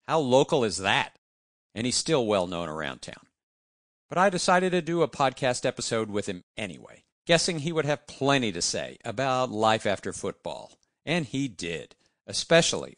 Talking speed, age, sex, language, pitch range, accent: 165 wpm, 50-69, male, English, 100-160 Hz, American